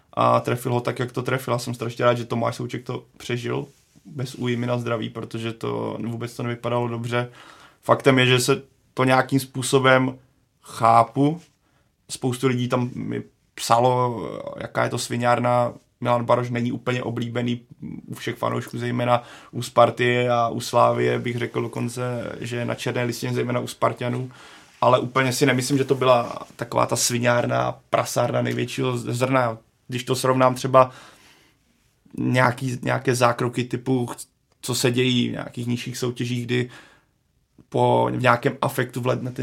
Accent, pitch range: native, 120-130 Hz